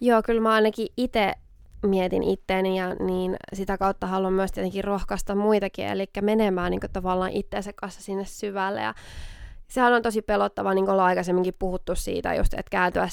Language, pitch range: Finnish, 180-205 Hz